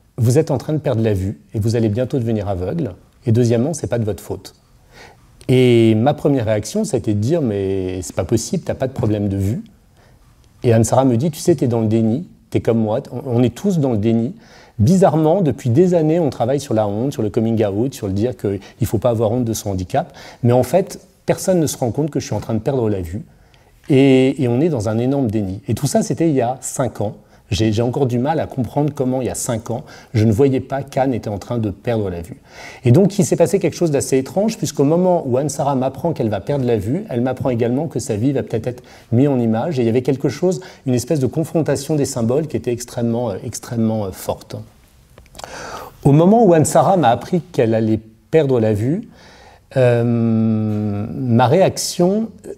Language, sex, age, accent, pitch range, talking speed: French, male, 40-59, French, 110-145 Hz, 240 wpm